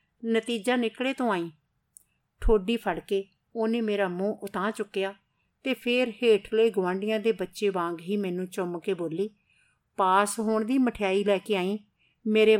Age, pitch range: 50-69, 175-215 Hz